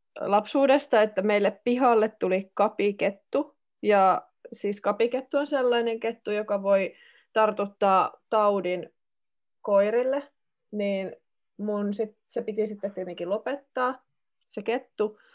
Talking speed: 105 wpm